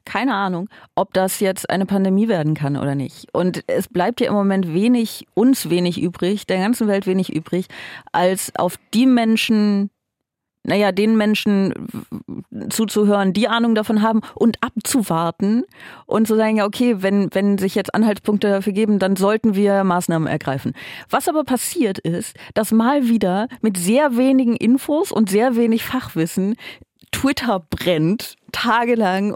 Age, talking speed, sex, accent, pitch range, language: 30-49, 155 wpm, female, German, 175-230 Hz, German